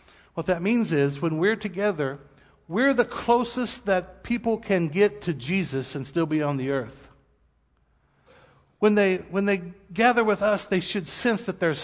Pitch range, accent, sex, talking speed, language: 150-205 Hz, American, male, 170 wpm, English